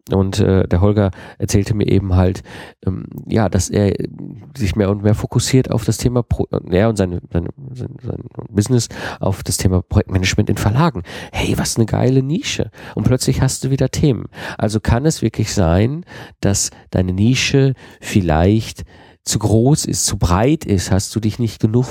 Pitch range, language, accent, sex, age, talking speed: 100-130 Hz, German, German, male, 40-59, 180 wpm